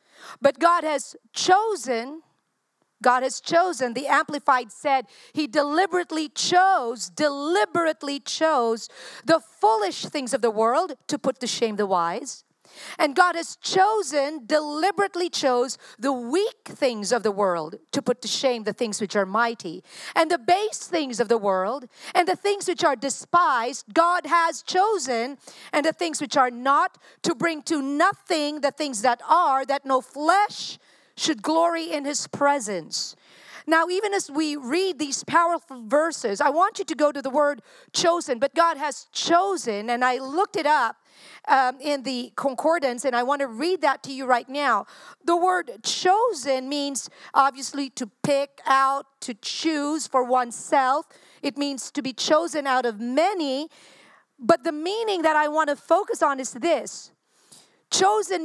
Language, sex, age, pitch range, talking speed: English, female, 50-69, 260-345 Hz, 160 wpm